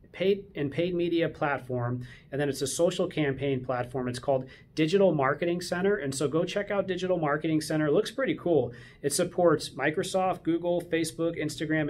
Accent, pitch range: American, 140-175 Hz